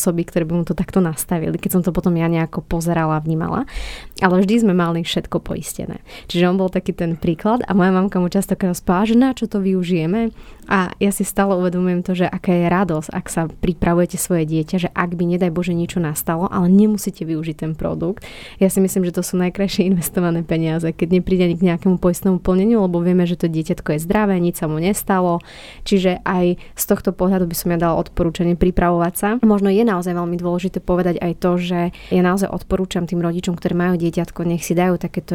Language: Slovak